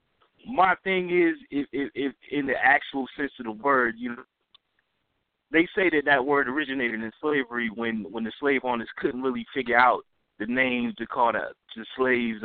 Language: English